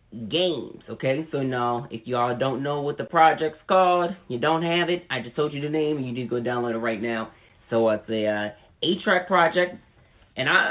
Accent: American